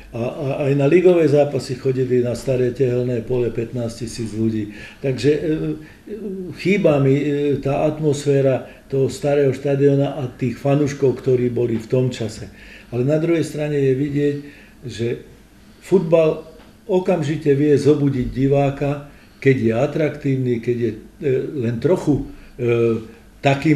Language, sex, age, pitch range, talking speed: Czech, male, 50-69, 120-145 Hz, 125 wpm